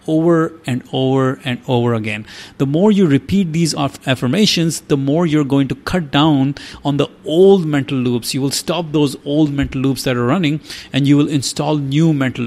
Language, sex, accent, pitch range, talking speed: English, male, Indian, 125-160 Hz, 195 wpm